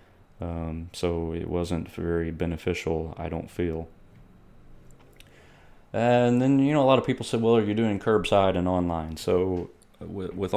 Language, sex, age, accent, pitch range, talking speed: English, male, 30-49, American, 85-95 Hz, 160 wpm